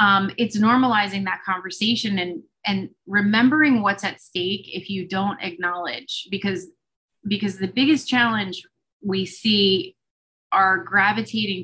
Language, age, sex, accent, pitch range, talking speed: English, 20-39, female, American, 175-205 Hz, 125 wpm